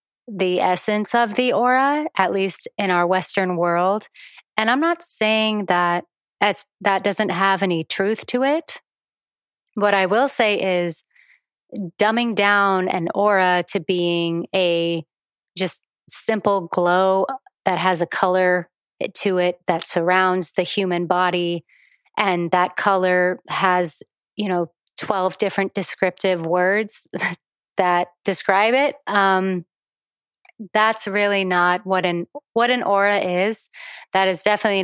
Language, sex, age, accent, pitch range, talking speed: English, female, 30-49, American, 180-205 Hz, 130 wpm